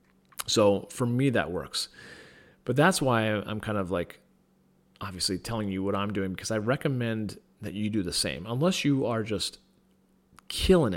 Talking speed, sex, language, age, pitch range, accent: 170 wpm, male, English, 30-49, 100-125 Hz, American